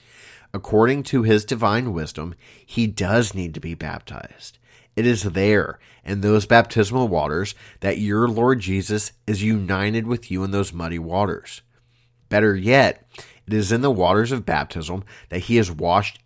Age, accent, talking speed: 30-49, American, 160 wpm